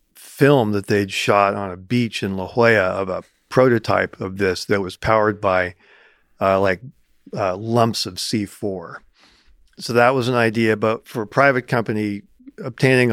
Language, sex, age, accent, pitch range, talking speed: English, male, 50-69, American, 95-115 Hz, 165 wpm